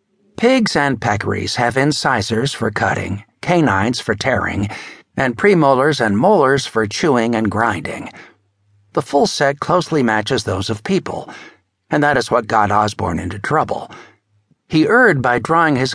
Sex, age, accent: male, 60-79, American